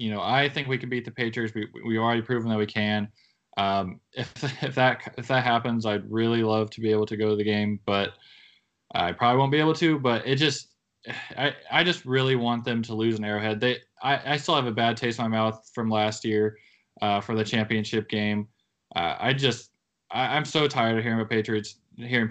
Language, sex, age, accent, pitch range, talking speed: English, male, 20-39, American, 105-125 Hz, 225 wpm